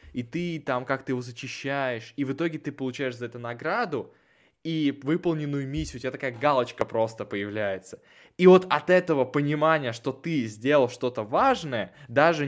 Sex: male